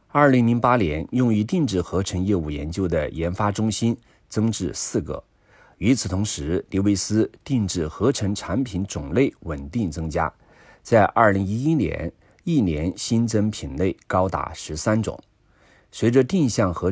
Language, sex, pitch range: Chinese, male, 85-110 Hz